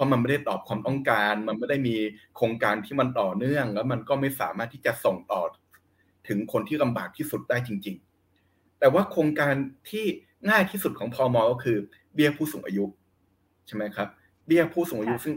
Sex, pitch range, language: male, 100-155 Hz, Thai